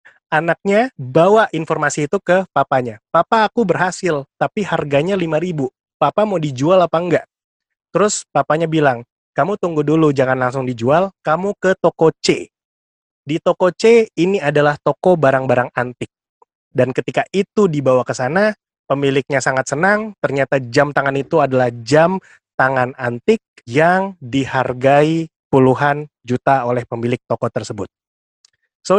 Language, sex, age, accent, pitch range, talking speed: Indonesian, male, 20-39, native, 130-170 Hz, 135 wpm